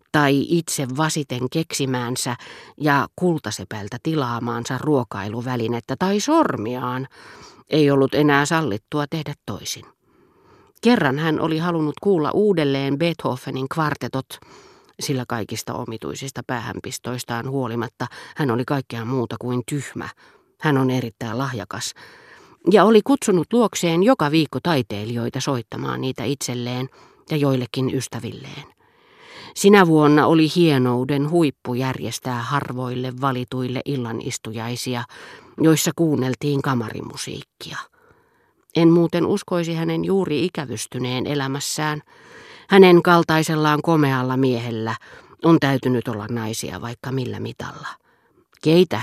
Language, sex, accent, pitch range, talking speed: Finnish, female, native, 125-160 Hz, 100 wpm